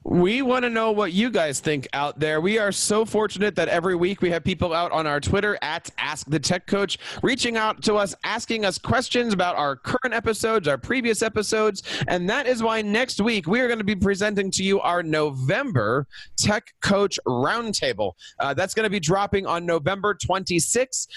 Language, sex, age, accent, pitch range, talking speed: English, male, 30-49, American, 175-220 Hz, 200 wpm